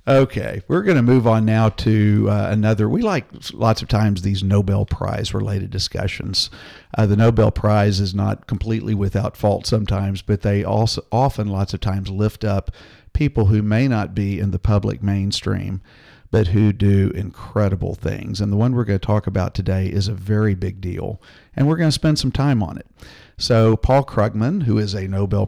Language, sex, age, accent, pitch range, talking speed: English, male, 50-69, American, 100-110 Hz, 195 wpm